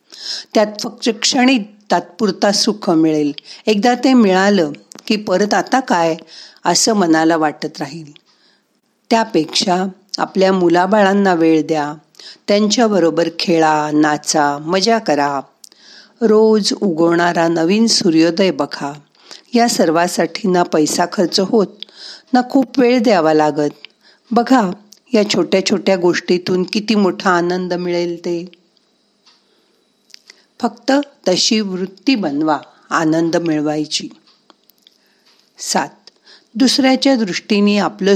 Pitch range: 165-220 Hz